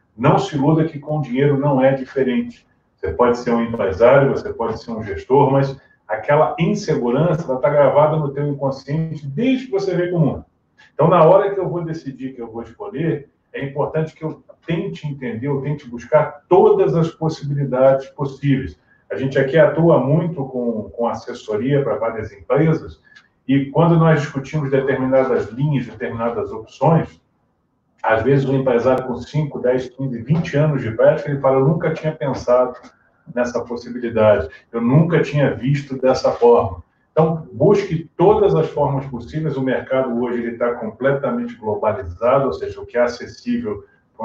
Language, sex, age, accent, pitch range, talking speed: Portuguese, male, 40-59, Brazilian, 120-155 Hz, 165 wpm